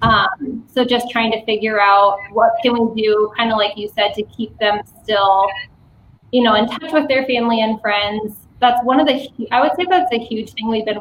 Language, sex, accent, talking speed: English, female, American, 230 wpm